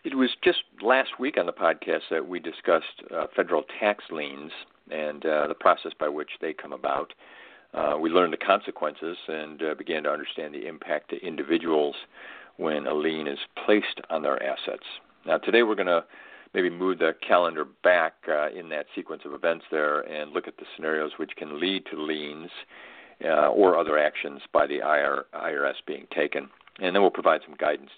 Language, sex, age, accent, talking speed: English, male, 50-69, American, 190 wpm